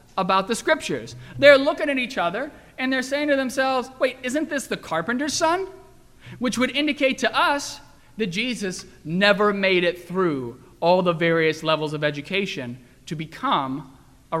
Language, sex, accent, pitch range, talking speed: English, male, American, 155-230 Hz, 165 wpm